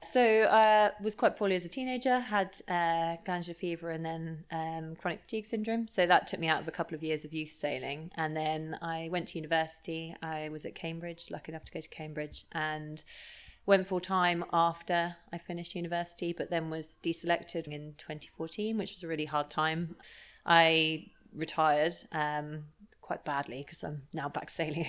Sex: female